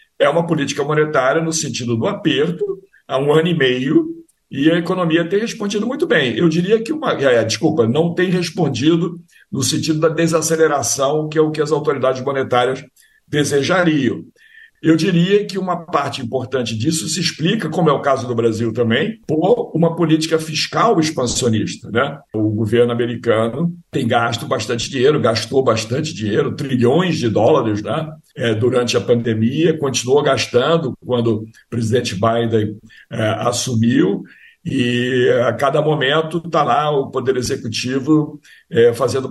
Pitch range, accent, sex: 120-165 Hz, Brazilian, male